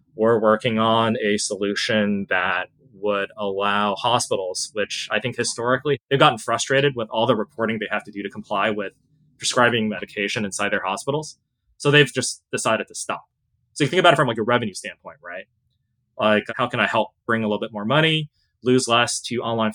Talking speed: 195 wpm